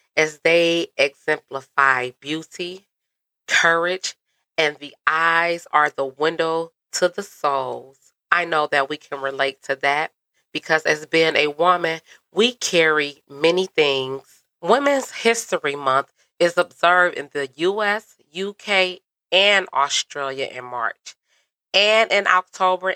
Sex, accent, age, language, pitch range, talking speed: female, American, 30-49, English, 145-185 Hz, 125 wpm